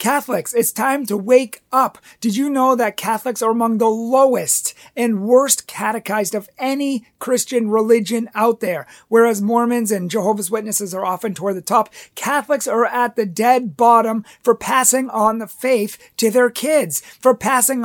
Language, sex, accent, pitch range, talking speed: English, male, American, 215-255 Hz, 170 wpm